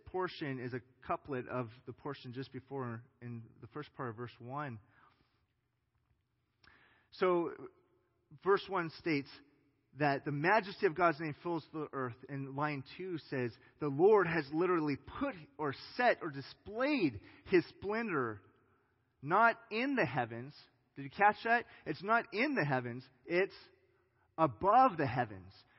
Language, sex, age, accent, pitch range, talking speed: English, male, 30-49, American, 125-175 Hz, 140 wpm